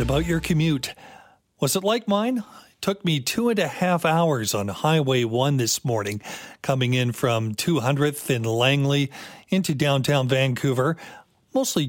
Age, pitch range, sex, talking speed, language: 40-59, 130-175 Hz, male, 155 wpm, English